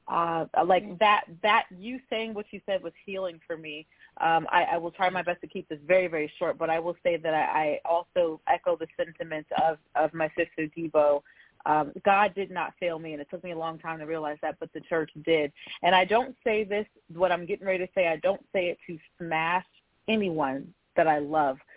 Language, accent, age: English, American, 30-49